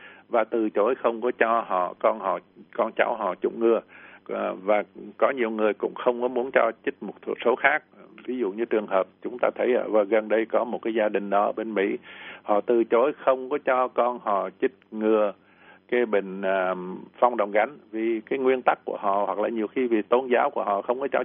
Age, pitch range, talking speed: 60-79, 110-130 Hz, 225 wpm